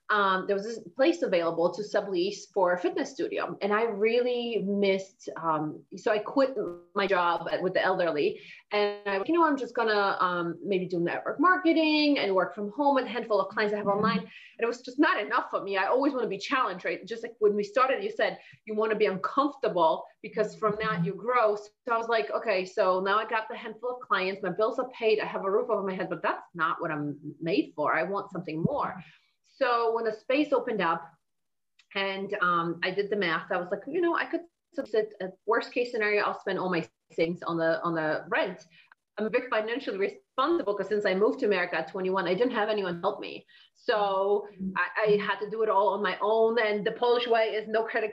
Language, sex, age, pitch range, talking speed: English, female, 30-49, 185-235 Hz, 235 wpm